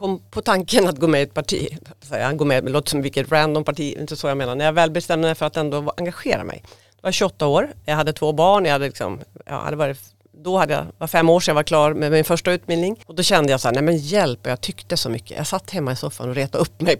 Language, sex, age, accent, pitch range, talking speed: Swedish, female, 40-59, native, 135-185 Hz, 280 wpm